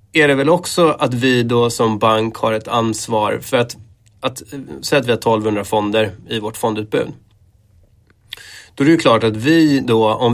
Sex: male